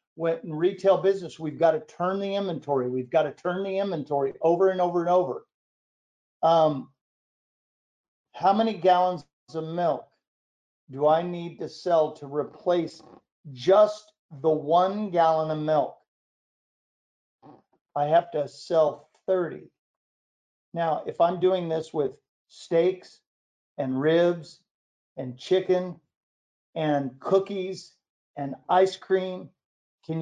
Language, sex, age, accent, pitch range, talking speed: English, male, 50-69, American, 150-185 Hz, 120 wpm